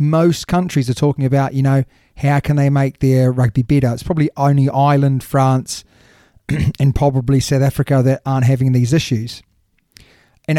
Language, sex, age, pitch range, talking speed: English, male, 30-49, 125-150 Hz, 165 wpm